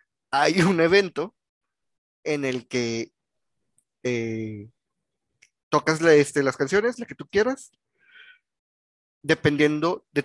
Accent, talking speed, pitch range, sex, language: Mexican, 105 wpm, 125-160 Hz, male, Spanish